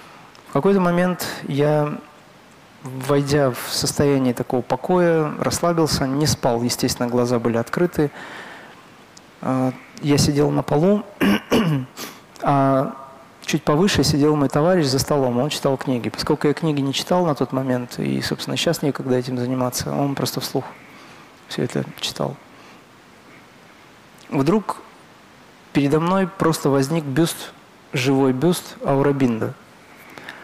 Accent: native